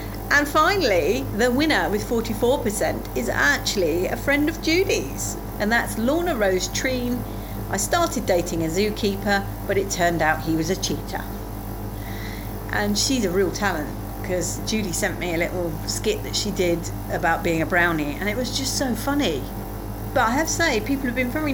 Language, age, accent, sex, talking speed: English, 40-59, British, female, 180 wpm